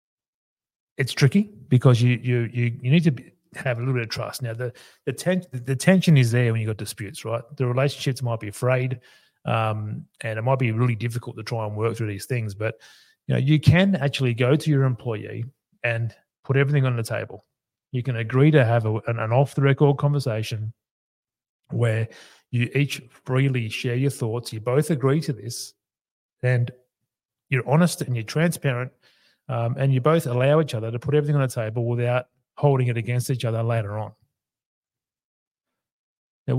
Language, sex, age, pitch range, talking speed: English, male, 30-49, 115-135 Hz, 185 wpm